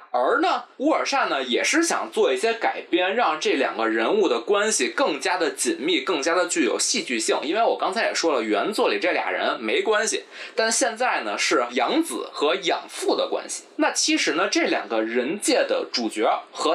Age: 20-39